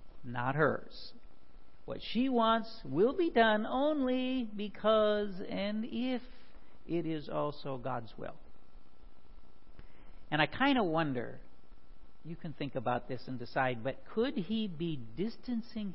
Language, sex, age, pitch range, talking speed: English, male, 50-69, 130-205 Hz, 130 wpm